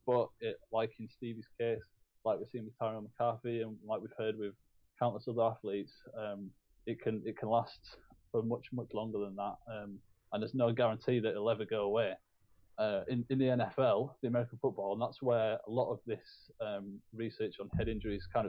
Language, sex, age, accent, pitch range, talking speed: English, male, 20-39, British, 105-120 Hz, 205 wpm